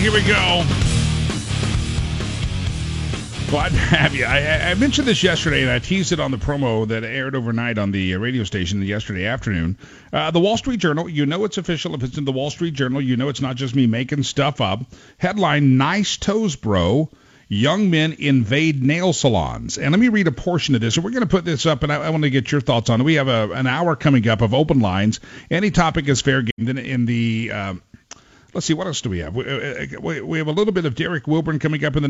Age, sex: 50-69, male